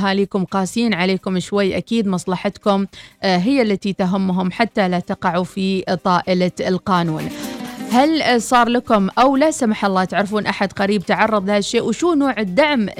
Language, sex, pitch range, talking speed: Arabic, female, 190-235 Hz, 140 wpm